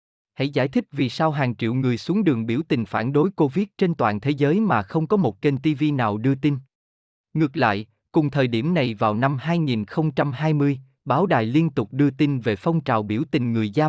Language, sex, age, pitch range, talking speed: Vietnamese, male, 20-39, 110-155 Hz, 215 wpm